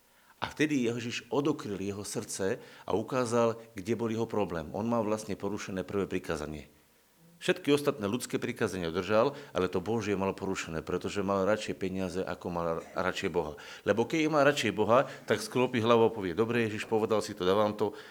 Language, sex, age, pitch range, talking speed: Slovak, male, 50-69, 90-120 Hz, 180 wpm